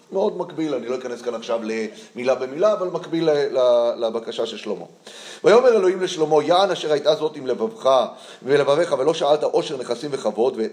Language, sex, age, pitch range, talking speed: Hebrew, male, 30-49, 120-190 Hz, 180 wpm